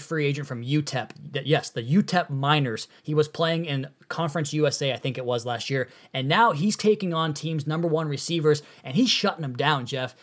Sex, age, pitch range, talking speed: male, 20-39, 140-170 Hz, 205 wpm